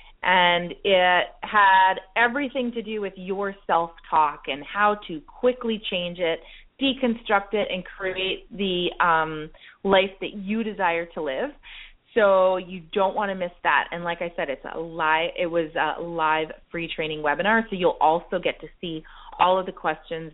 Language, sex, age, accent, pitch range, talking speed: English, female, 30-49, American, 175-210 Hz, 170 wpm